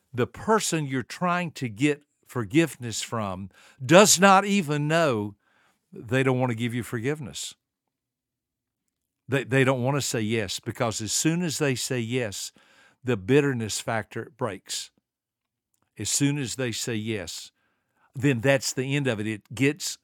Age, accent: 60-79, American